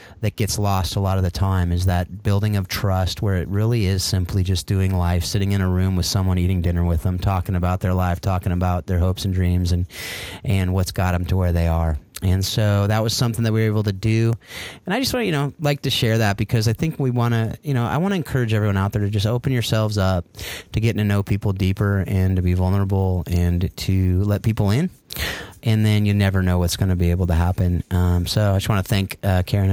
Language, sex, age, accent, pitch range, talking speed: English, male, 30-49, American, 90-110 Hz, 260 wpm